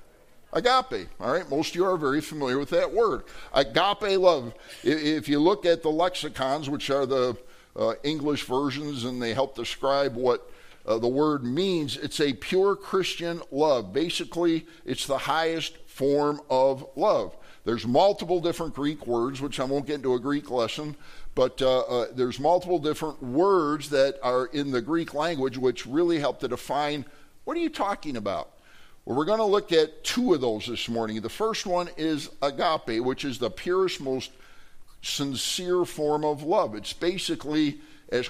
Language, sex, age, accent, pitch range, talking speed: English, male, 50-69, American, 135-180 Hz, 175 wpm